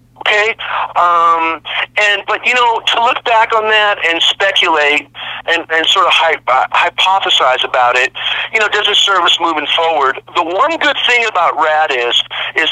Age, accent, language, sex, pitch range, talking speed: 40-59, American, English, male, 145-205 Hz, 165 wpm